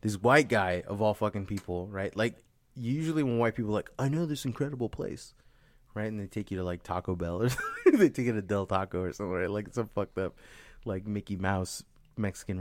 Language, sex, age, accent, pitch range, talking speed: English, male, 20-39, American, 105-130 Hz, 230 wpm